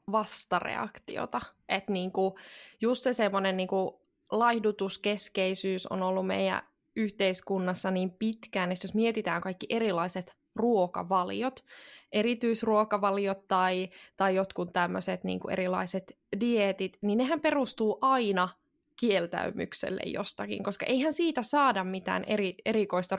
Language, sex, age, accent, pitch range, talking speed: Finnish, female, 20-39, native, 185-225 Hz, 105 wpm